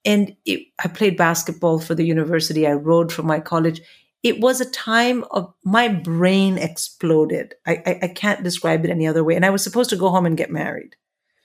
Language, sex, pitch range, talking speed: English, female, 165-195 Hz, 210 wpm